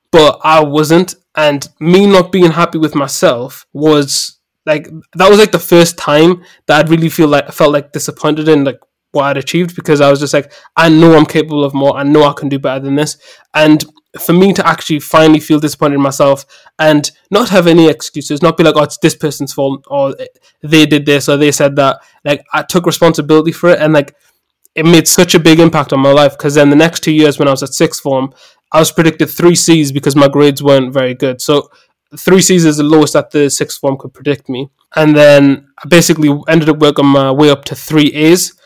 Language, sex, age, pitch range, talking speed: English, male, 20-39, 145-160 Hz, 230 wpm